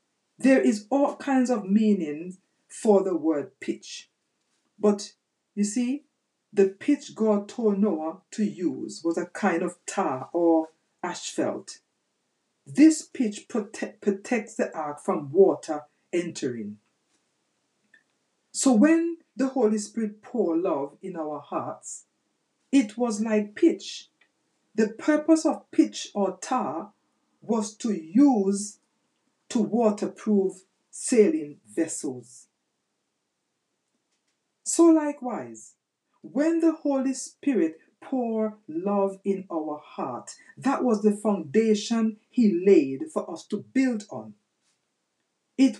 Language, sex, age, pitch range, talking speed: English, female, 60-79, 195-265 Hz, 115 wpm